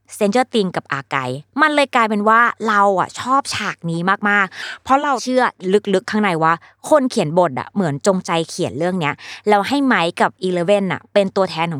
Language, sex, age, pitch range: Thai, female, 20-39, 155-220 Hz